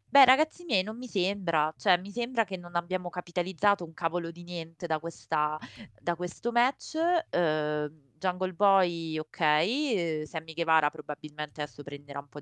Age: 20-39